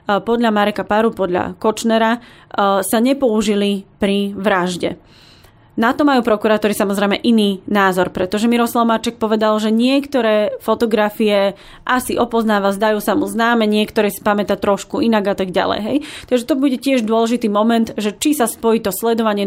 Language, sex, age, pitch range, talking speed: Slovak, female, 20-39, 195-220 Hz, 150 wpm